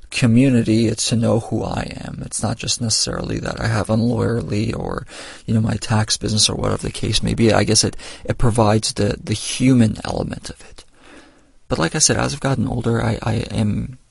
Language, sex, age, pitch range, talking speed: English, male, 40-59, 105-120 Hz, 210 wpm